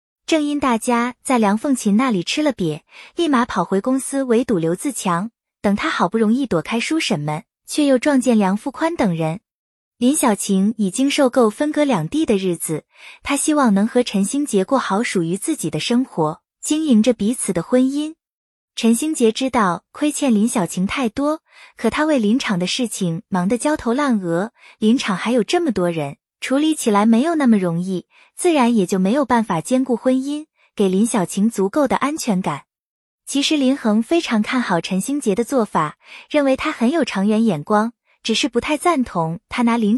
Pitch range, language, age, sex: 195-275 Hz, Chinese, 20-39, female